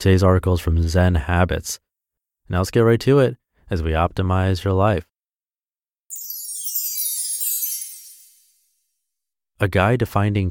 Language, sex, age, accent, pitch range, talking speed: English, male, 30-49, American, 90-115 Hz, 115 wpm